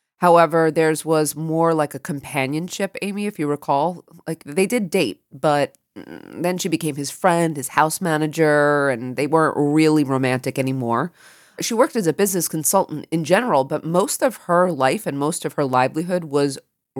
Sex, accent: female, American